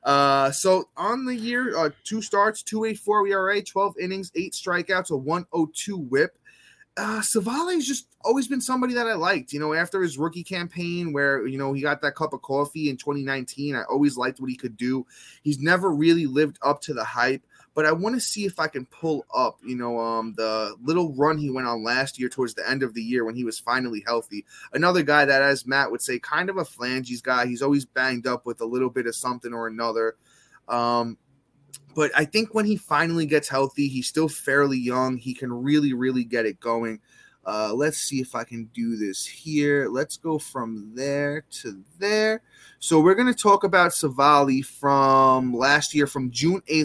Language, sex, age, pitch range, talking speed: English, male, 20-39, 130-175 Hz, 215 wpm